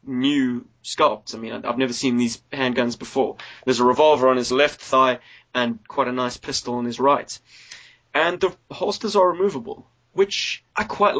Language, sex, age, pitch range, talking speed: English, male, 20-39, 125-160 Hz, 175 wpm